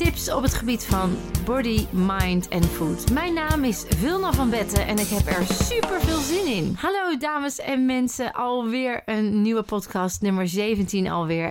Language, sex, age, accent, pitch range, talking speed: Dutch, female, 30-49, Dutch, 185-230 Hz, 175 wpm